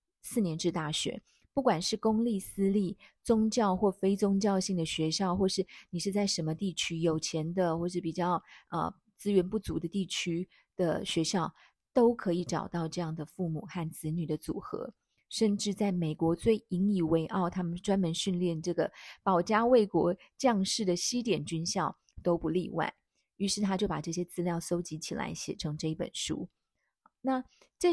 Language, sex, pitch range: Chinese, female, 170-215 Hz